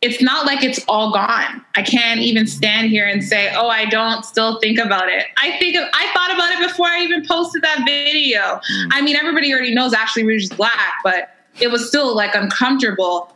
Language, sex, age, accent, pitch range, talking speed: English, female, 20-39, American, 200-260 Hz, 215 wpm